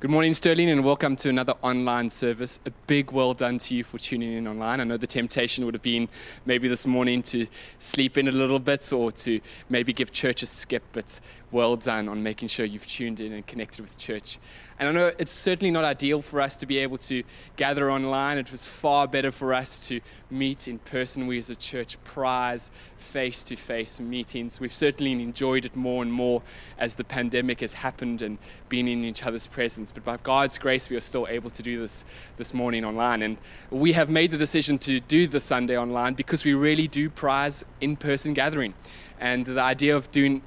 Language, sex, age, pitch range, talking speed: English, male, 20-39, 115-135 Hz, 210 wpm